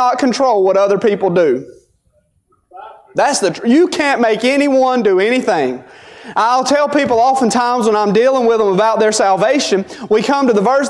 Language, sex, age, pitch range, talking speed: English, male, 30-49, 220-280 Hz, 170 wpm